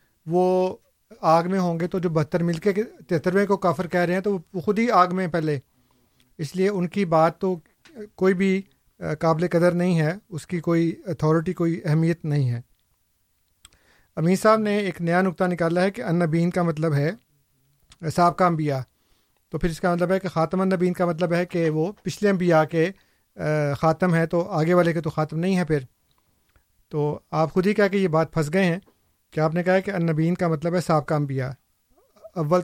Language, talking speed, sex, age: Urdu, 205 wpm, male, 50-69